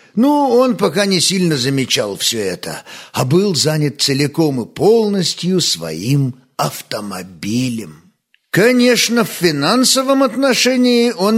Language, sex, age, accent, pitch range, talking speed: Russian, male, 50-69, native, 150-210 Hz, 110 wpm